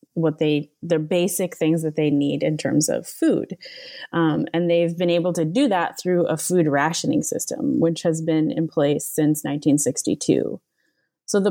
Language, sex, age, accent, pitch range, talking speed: English, female, 20-39, American, 155-180 Hz, 165 wpm